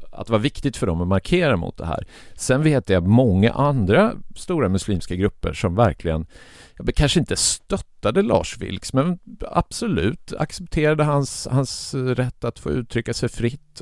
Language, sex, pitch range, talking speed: Swedish, male, 90-125 Hz, 170 wpm